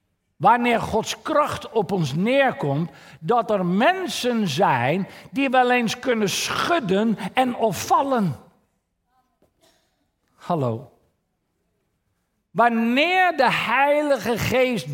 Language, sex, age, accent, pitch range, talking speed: Dutch, male, 50-69, Dutch, 185-270 Hz, 90 wpm